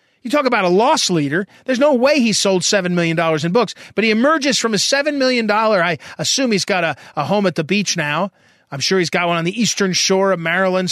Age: 40-59